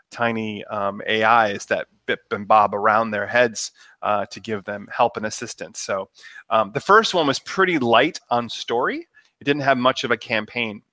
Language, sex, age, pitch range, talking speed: English, male, 30-49, 110-130 Hz, 185 wpm